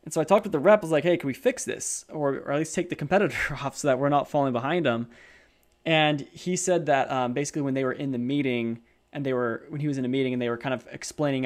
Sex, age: male, 20-39